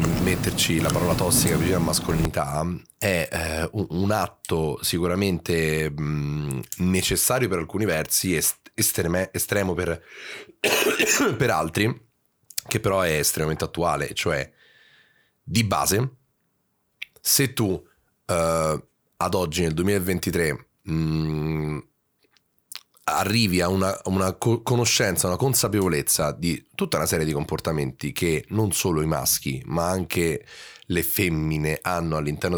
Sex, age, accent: male, 30-49, native